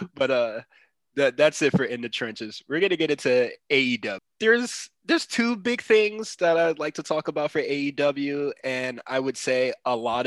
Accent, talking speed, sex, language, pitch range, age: American, 200 wpm, male, English, 110-140 Hz, 20-39